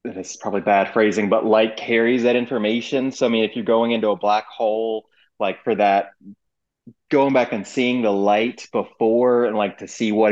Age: 30-49